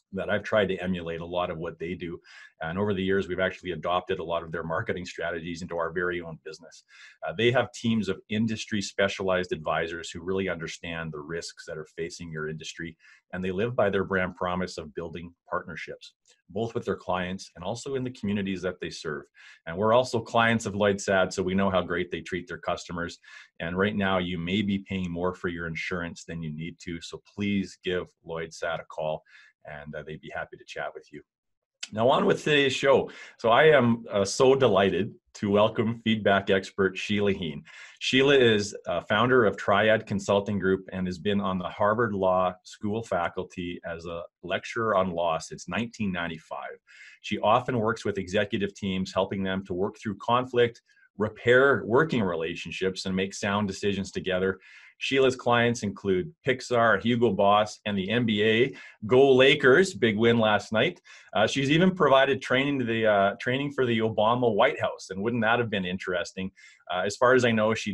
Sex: male